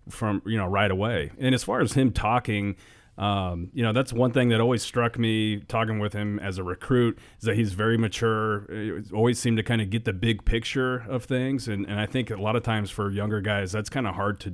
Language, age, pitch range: English, 30-49, 100-115 Hz